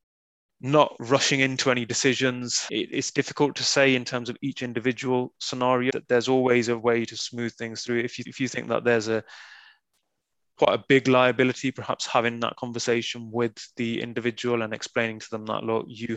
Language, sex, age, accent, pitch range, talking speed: English, male, 20-39, British, 110-130 Hz, 190 wpm